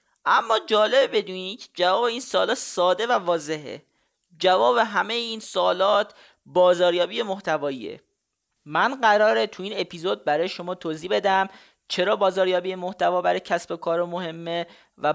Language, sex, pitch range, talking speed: Persian, male, 155-195 Hz, 125 wpm